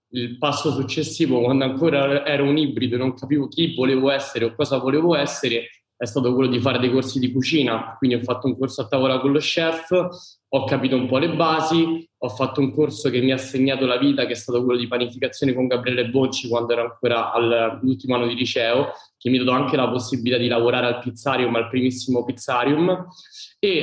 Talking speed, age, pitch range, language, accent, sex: 210 wpm, 20-39, 125-145 Hz, Italian, native, male